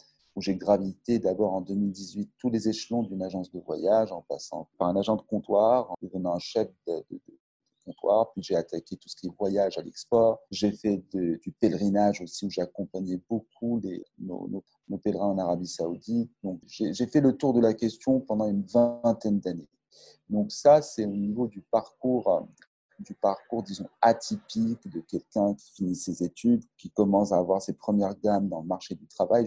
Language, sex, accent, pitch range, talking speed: French, male, French, 95-120 Hz, 200 wpm